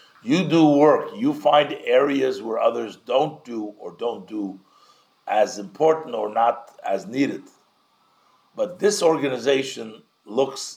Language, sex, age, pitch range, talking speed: English, male, 50-69, 110-145 Hz, 130 wpm